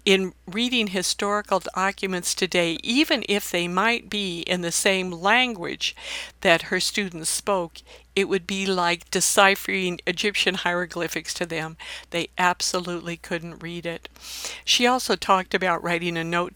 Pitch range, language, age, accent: 175-210 Hz, English, 60-79, American